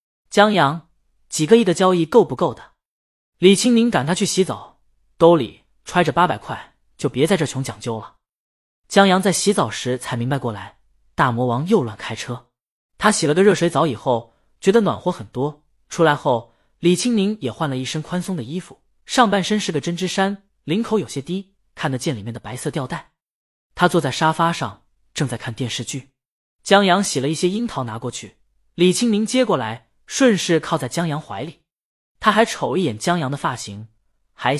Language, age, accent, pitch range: Chinese, 20-39, native, 125-190 Hz